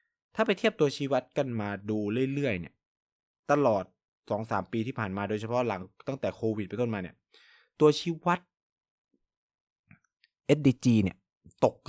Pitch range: 105-150 Hz